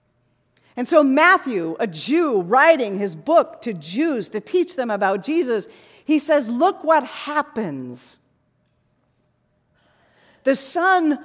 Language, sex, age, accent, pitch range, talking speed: English, female, 40-59, American, 225-320 Hz, 115 wpm